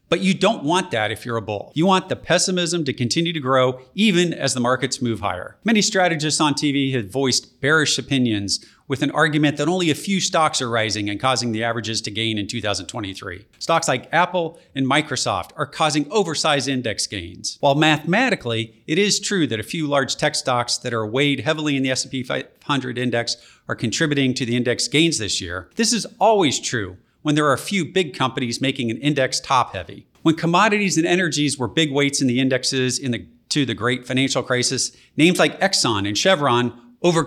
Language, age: English, 40-59